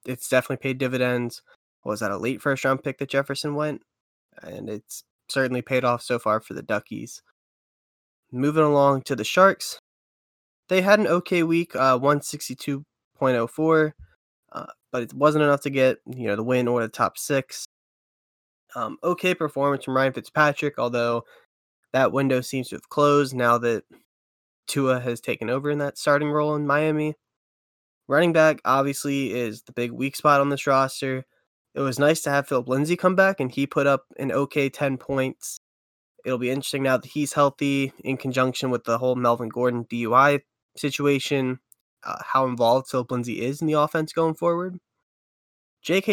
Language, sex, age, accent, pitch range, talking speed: English, male, 10-29, American, 125-145 Hz, 170 wpm